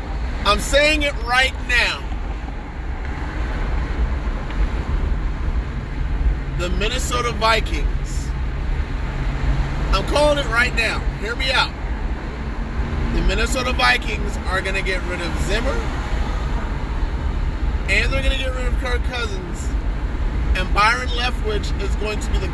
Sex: male